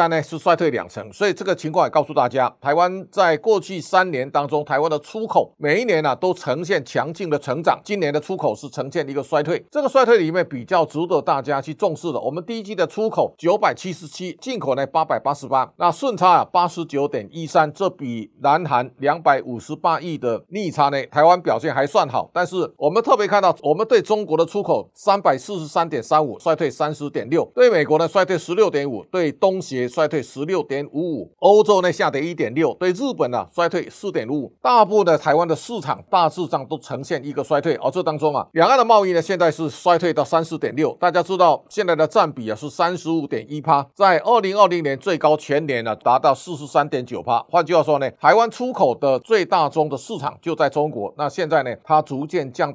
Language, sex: Chinese, male